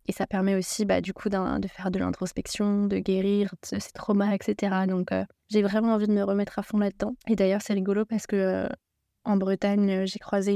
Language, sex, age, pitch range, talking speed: French, female, 20-39, 190-215 Hz, 215 wpm